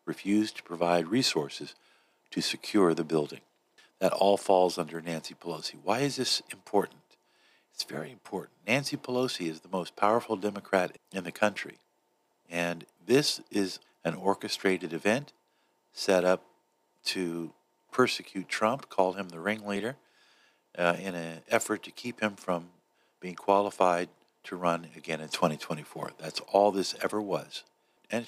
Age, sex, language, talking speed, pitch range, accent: 50-69, male, English, 140 wpm, 85-100 Hz, American